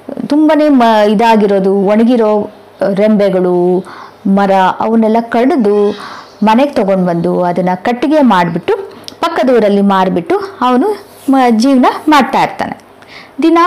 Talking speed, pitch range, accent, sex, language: 90 wpm, 210-280 Hz, Indian, female, English